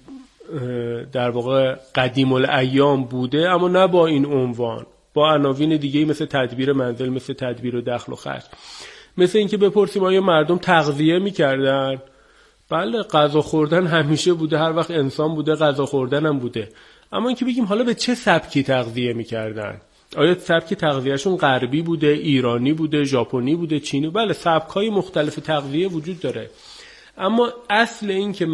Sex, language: male, Persian